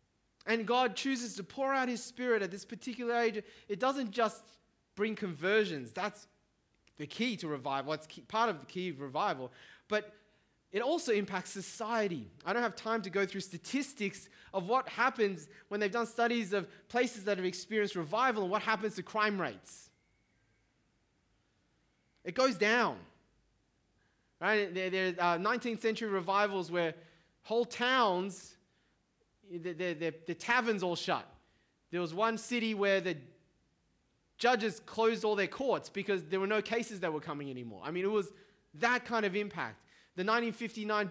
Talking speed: 160 wpm